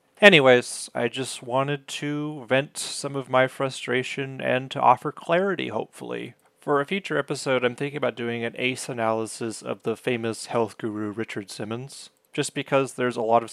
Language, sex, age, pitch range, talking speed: English, male, 30-49, 115-140 Hz, 175 wpm